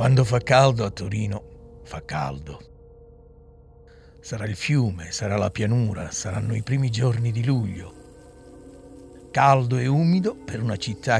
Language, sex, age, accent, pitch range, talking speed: Italian, male, 60-79, native, 95-130 Hz, 135 wpm